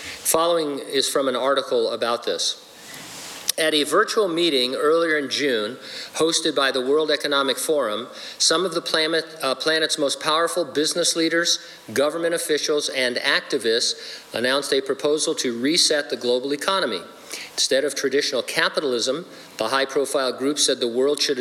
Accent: American